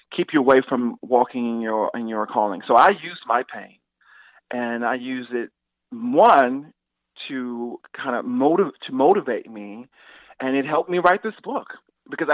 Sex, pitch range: male, 115-135 Hz